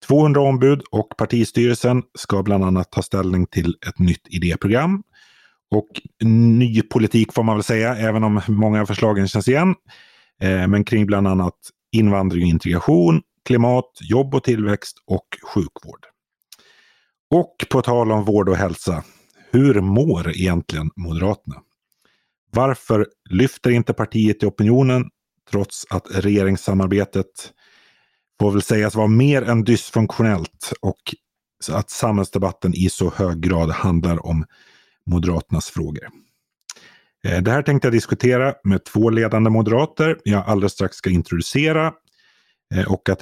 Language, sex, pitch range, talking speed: Swedish, male, 90-115 Hz, 135 wpm